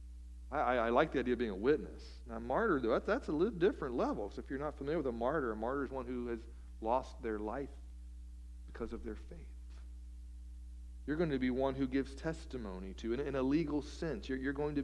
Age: 40-59